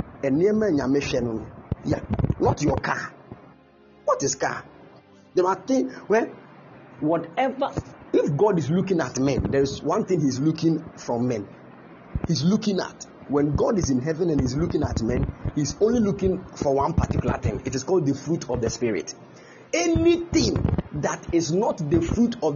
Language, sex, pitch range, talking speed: English, male, 135-185 Hz, 175 wpm